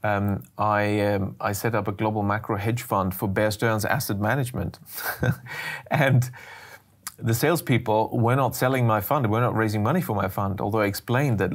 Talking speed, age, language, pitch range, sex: 175 wpm, 30-49, Dutch, 100-120 Hz, male